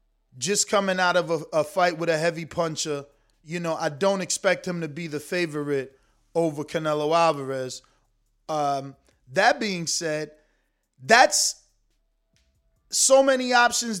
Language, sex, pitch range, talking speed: English, male, 150-195 Hz, 135 wpm